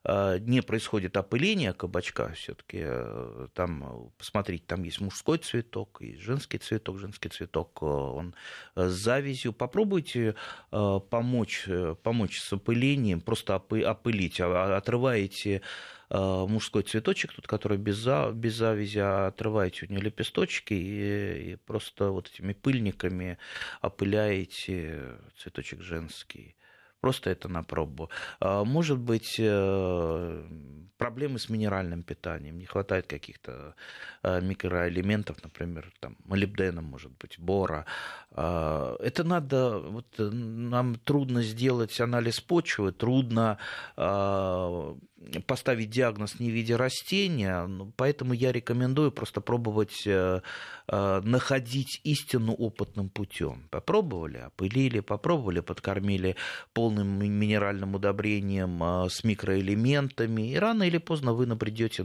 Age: 30-49